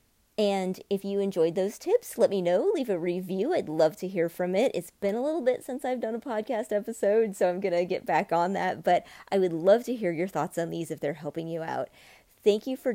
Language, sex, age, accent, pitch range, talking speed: English, female, 30-49, American, 170-220 Hz, 255 wpm